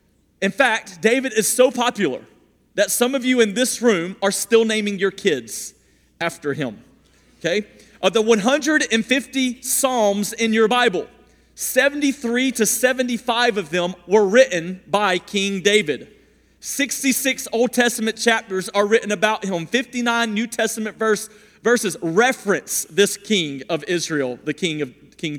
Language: English